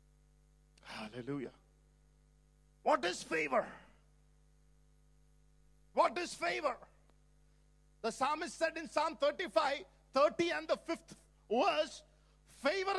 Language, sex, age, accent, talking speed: English, male, 50-69, Indian, 90 wpm